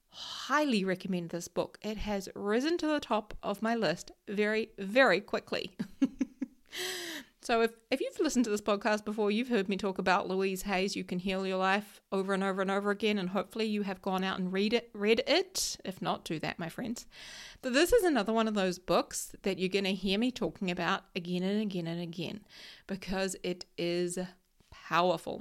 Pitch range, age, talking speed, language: 185-235 Hz, 30-49, 200 wpm, English